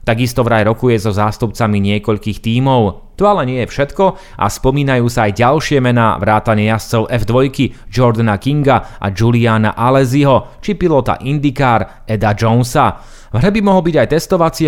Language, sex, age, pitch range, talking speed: Slovak, male, 30-49, 110-140 Hz, 150 wpm